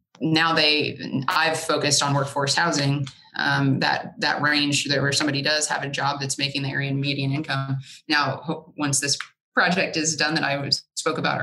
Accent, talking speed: American, 185 wpm